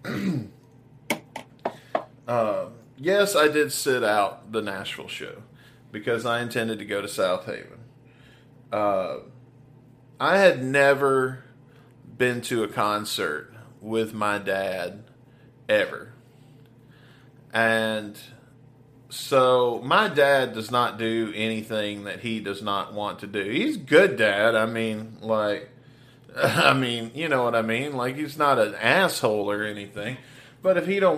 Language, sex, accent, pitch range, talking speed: English, male, American, 115-140 Hz, 135 wpm